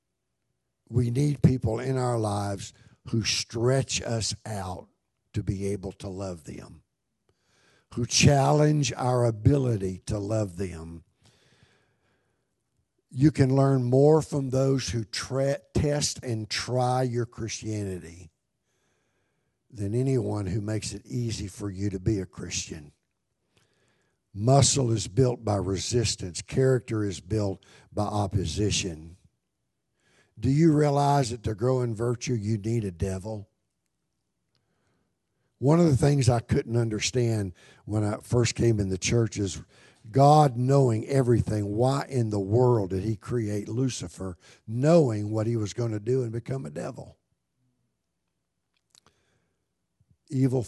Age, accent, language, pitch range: 60-79, American, English, 100-130 Hz